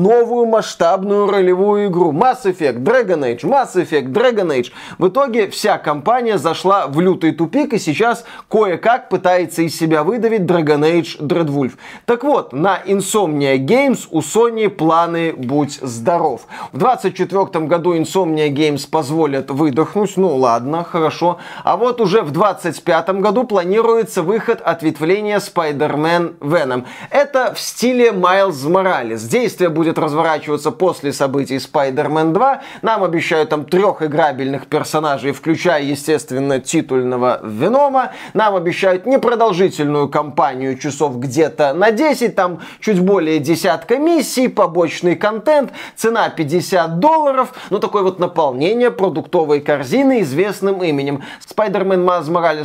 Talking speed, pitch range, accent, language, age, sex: 130 wpm, 155-220 Hz, native, Russian, 20-39, male